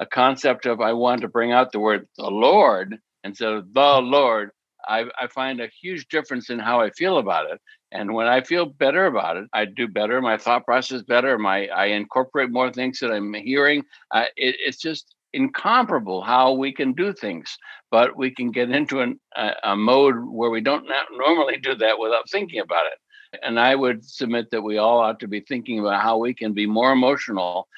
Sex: male